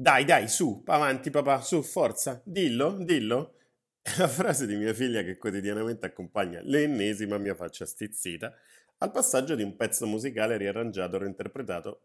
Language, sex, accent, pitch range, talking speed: Italian, male, native, 95-135 Hz, 155 wpm